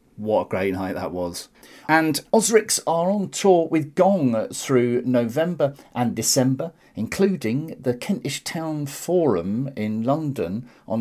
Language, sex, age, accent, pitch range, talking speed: English, male, 40-59, British, 110-175 Hz, 135 wpm